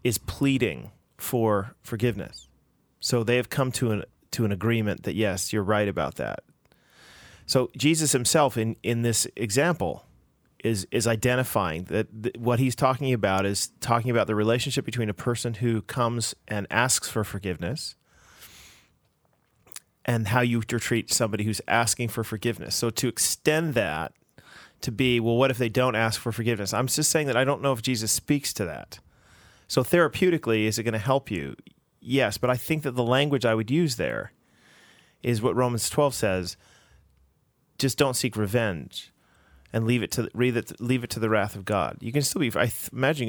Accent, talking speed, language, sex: American, 175 wpm, English, male